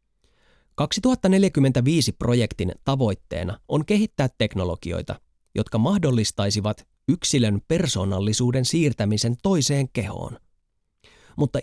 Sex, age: male, 30-49